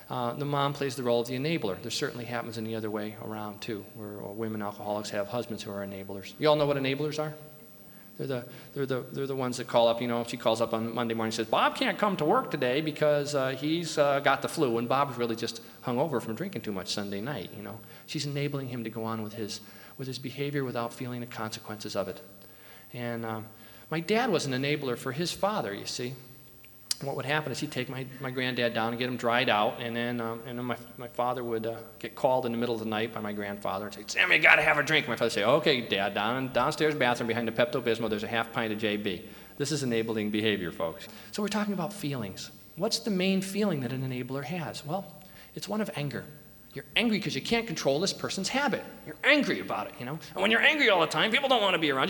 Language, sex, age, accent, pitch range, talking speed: English, male, 40-59, American, 115-150 Hz, 255 wpm